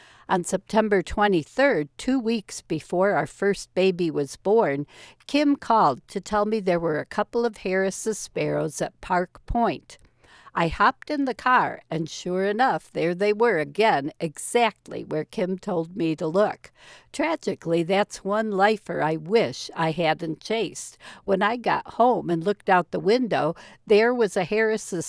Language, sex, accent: English, female, American